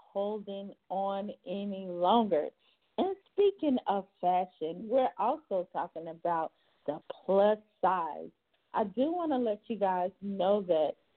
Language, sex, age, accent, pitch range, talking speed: English, female, 50-69, American, 185-245 Hz, 130 wpm